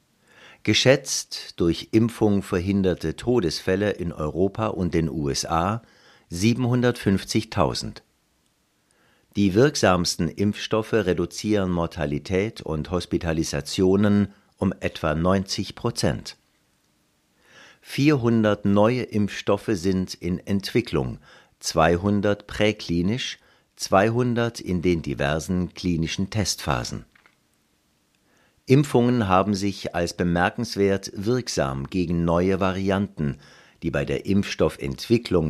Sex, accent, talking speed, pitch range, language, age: male, German, 80 wpm, 85-110 Hz, German, 60-79